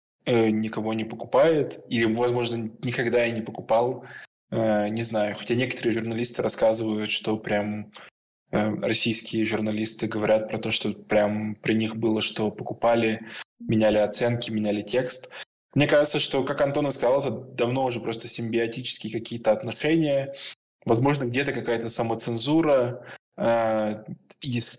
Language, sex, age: Russian, male, 20-39